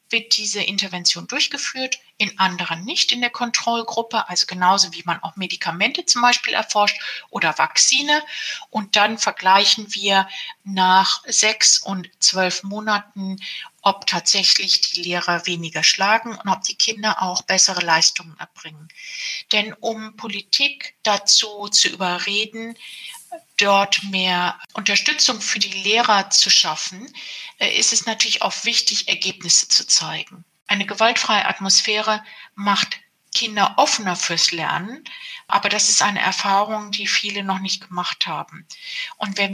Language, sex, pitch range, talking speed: German, female, 190-235 Hz, 130 wpm